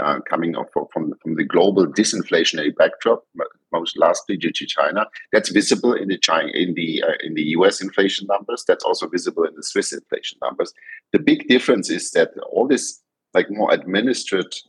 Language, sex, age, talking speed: English, male, 50-69, 180 wpm